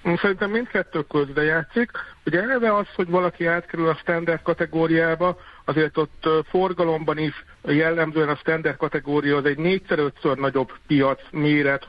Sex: male